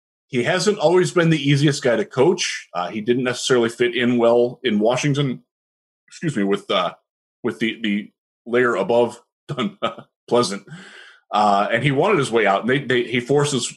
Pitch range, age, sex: 110-150 Hz, 20-39, male